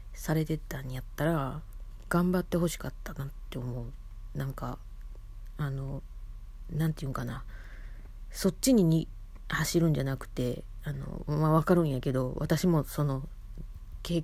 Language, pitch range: Japanese, 105-155 Hz